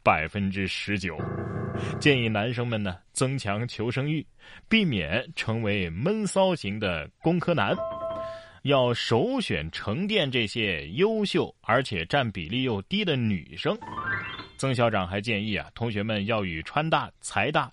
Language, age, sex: Chinese, 20-39, male